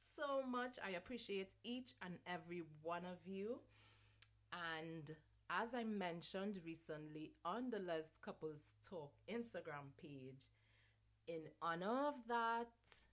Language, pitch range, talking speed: English, 155-215 Hz, 120 wpm